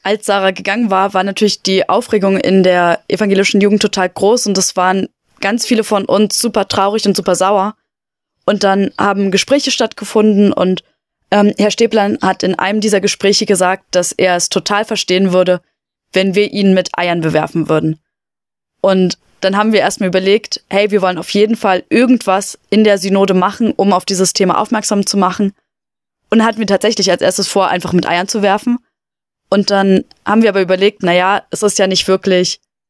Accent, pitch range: German, 185-210 Hz